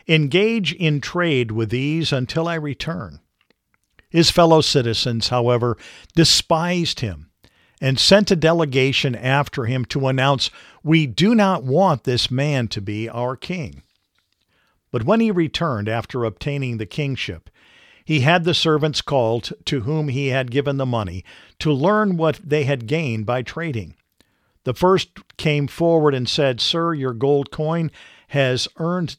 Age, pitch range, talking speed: 50-69, 125-165 Hz, 150 wpm